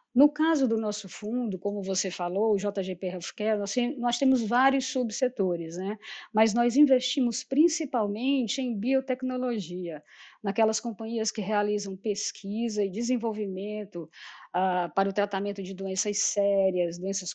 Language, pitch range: Portuguese, 205-255 Hz